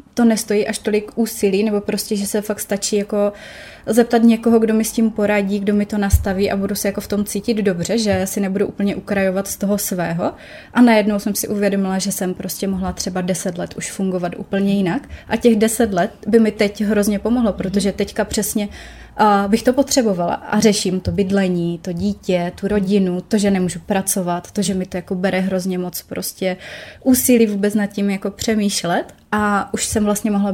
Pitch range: 195-220 Hz